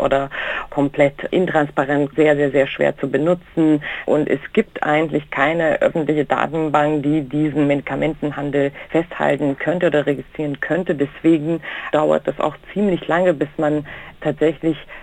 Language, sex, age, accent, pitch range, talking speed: German, female, 50-69, German, 145-175 Hz, 130 wpm